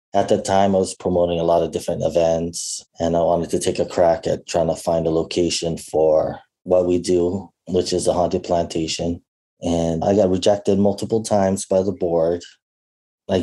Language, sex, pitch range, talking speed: English, male, 85-100 Hz, 190 wpm